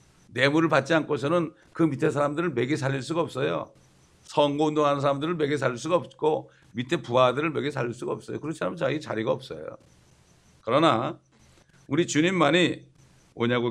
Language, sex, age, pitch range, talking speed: English, male, 60-79, 115-150 Hz, 140 wpm